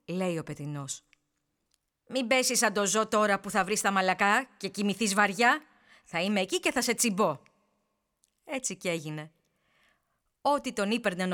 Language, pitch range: Greek, 170-260 Hz